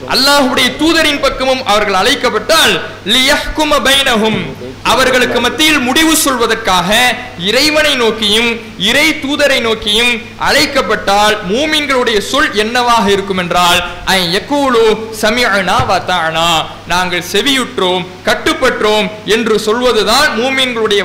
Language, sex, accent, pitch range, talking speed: English, male, Indian, 200-265 Hz, 90 wpm